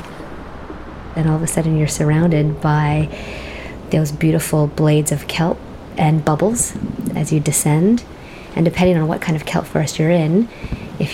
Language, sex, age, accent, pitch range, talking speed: English, female, 30-49, American, 135-165 Hz, 155 wpm